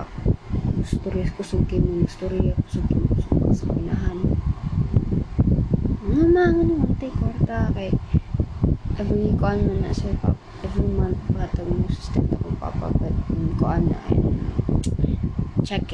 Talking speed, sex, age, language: 80 wpm, female, 20-39, Filipino